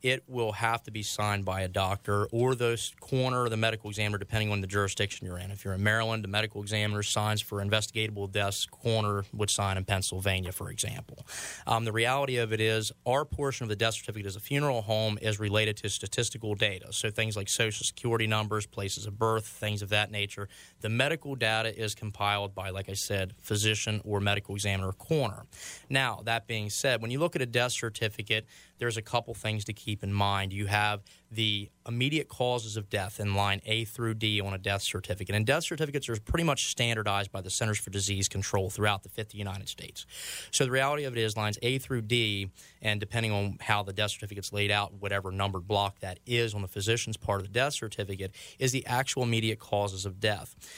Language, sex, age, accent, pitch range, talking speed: English, male, 20-39, American, 100-115 Hz, 215 wpm